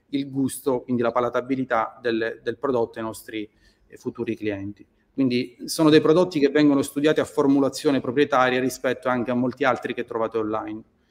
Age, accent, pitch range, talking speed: 30-49, native, 120-140 Hz, 160 wpm